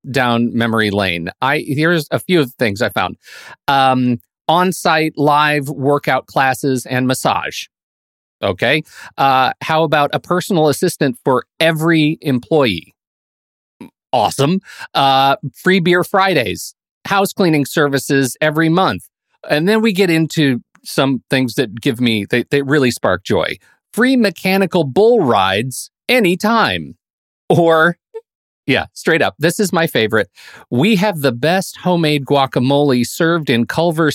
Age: 40-59